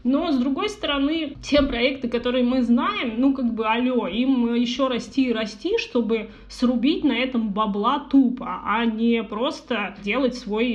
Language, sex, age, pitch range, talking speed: Russian, female, 20-39, 225-265 Hz, 160 wpm